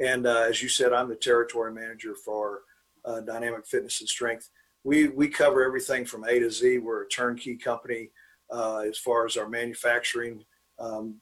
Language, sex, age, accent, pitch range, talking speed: English, male, 40-59, American, 115-130 Hz, 180 wpm